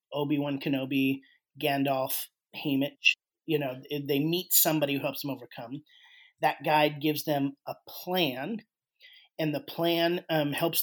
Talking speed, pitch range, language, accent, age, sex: 135 wpm, 140-160 Hz, English, American, 30-49, male